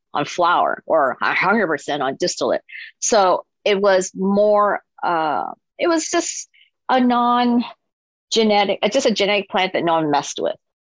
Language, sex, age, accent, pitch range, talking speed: English, female, 40-59, American, 185-255 Hz, 155 wpm